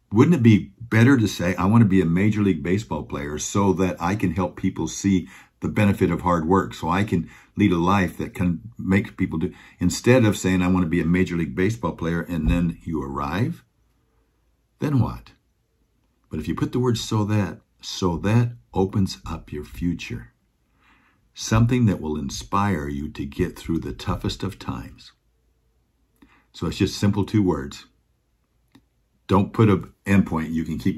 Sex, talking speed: male, 185 wpm